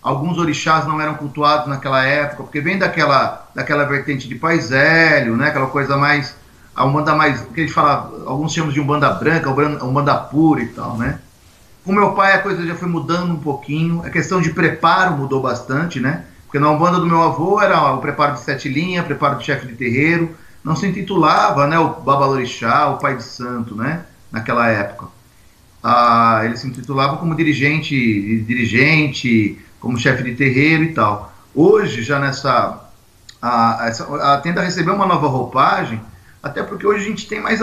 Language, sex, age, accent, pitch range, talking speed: Portuguese, male, 40-59, Brazilian, 130-165 Hz, 185 wpm